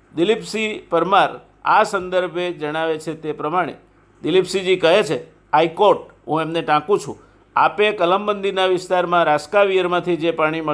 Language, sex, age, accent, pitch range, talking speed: Gujarati, male, 50-69, native, 155-190 Hz, 150 wpm